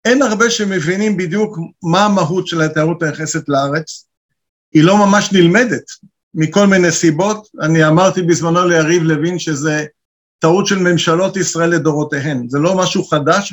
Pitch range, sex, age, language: 165-200 Hz, male, 50-69, Hebrew